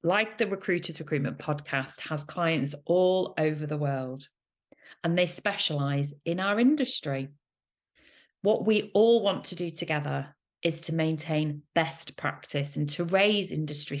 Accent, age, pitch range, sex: British, 40-59, 145-185 Hz, female